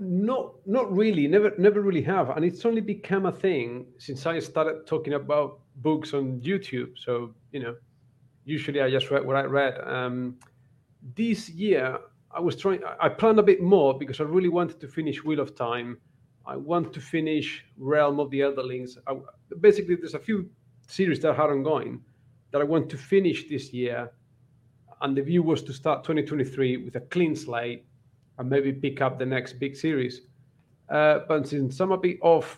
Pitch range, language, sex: 130-165 Hz, English, male